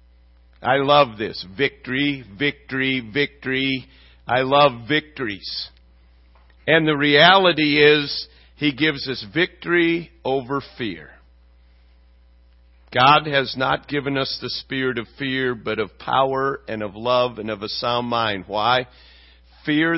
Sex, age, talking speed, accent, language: male, 50-69, 125 wpm, American, English